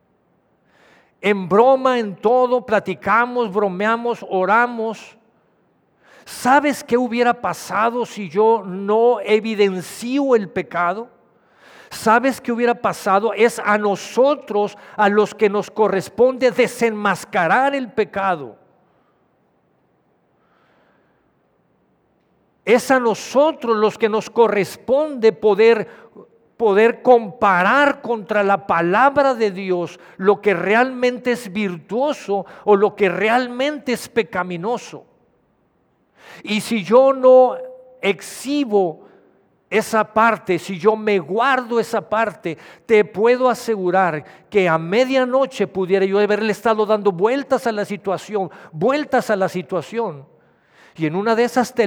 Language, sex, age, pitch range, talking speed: Spanish, male, 50-69, 195-240 Hz, 110 wpm